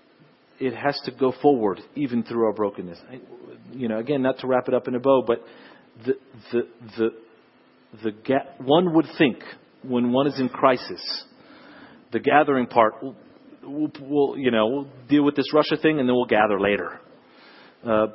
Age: 40-59